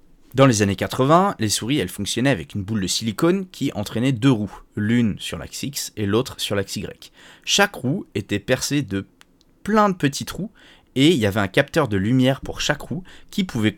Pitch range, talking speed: 100-140 Hz, 210 wpm